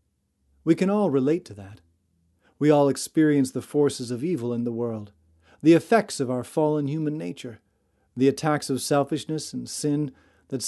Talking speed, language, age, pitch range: 170 wpm, English, 40-59, 120-160 Hz